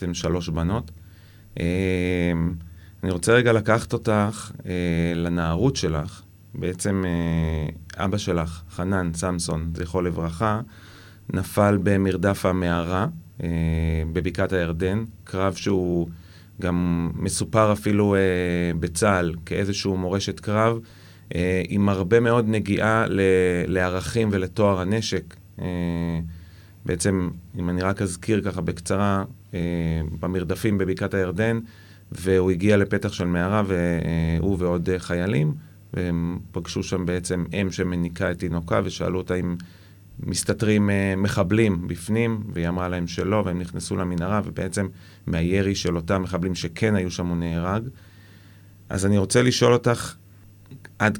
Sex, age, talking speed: male, 30-49, 110 wpm